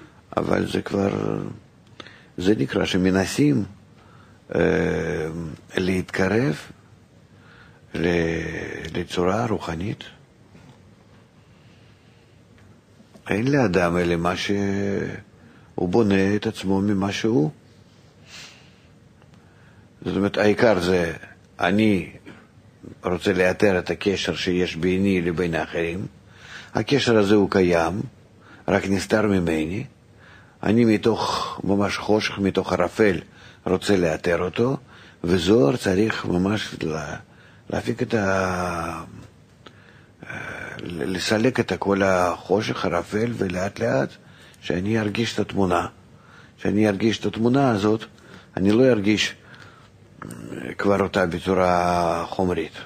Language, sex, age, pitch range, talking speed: Hebrew, male, 50-69, 90-110 Hz, 90 wpm